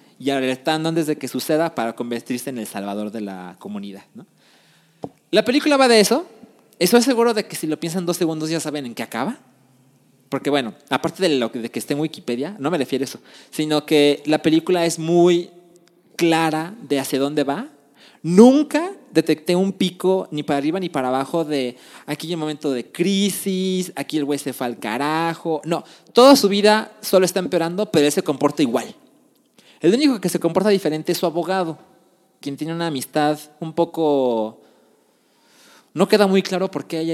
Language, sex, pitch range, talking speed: Spanish, male, 145-200 Hz, 195 wpm